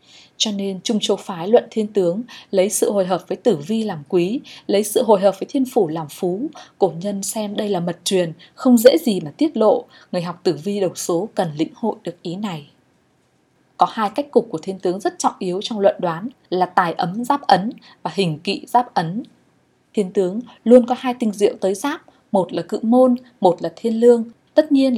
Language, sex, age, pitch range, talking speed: Vietnamese, female, 20-39, 185-240 Hz, 225 wpm